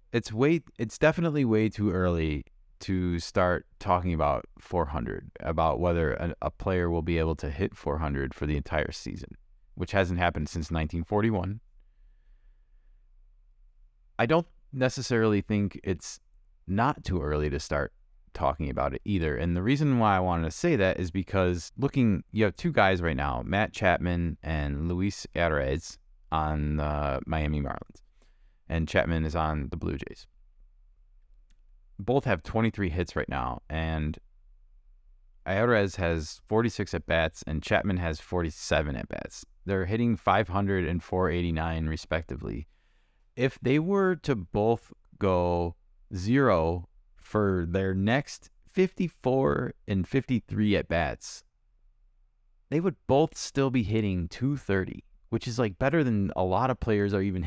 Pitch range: 80-115 Hz